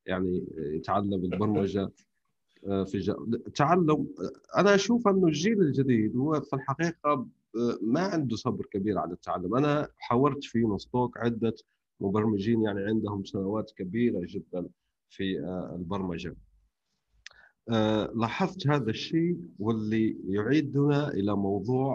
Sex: male